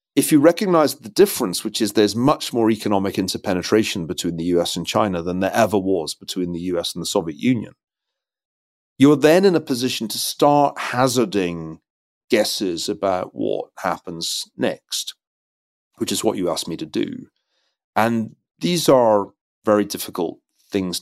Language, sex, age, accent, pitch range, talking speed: English, male, 40-59, British, 95-130 Hz, 155 wpm